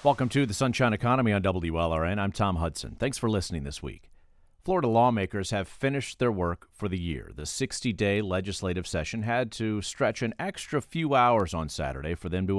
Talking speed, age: 190 wpm, 40-59